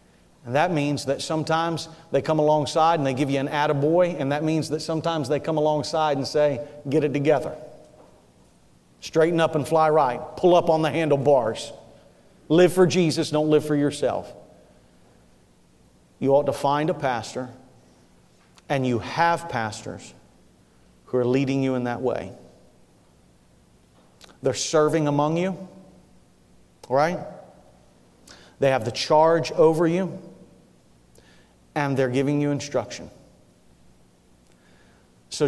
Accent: American